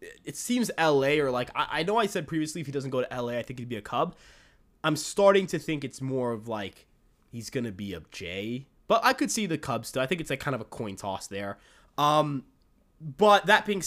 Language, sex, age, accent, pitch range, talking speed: English, male, 20-39, American, 135-190 Hz, 245 wpm